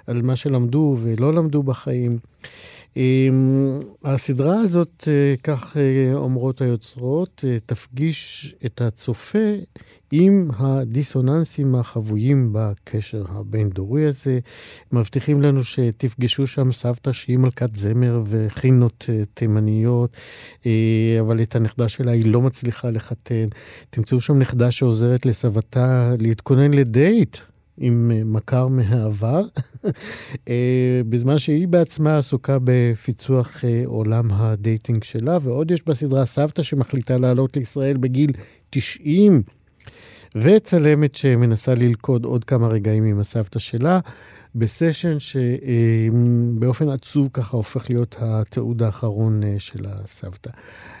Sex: male